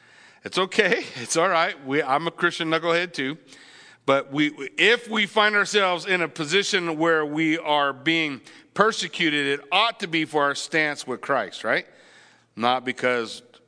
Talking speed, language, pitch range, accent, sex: 160 wpm, English, 145-185 Hz, American, male